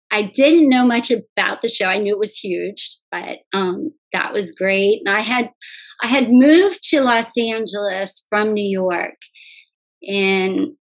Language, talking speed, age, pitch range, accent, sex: English, 165 wpm, 30-49, 195-230 Hz, American, female